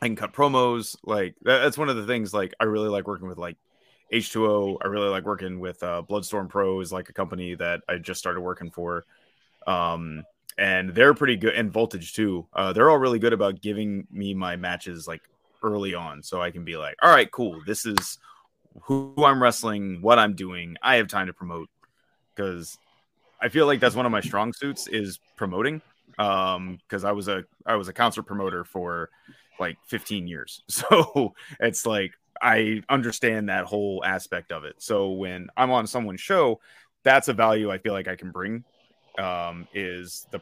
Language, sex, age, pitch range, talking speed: English, male, 20-39, 90-110 Hz, 200 wpm